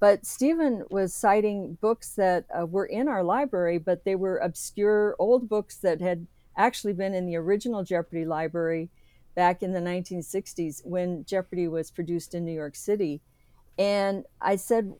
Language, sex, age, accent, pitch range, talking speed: English, female, 50-69, American, 175-220 Hz, 165 wpm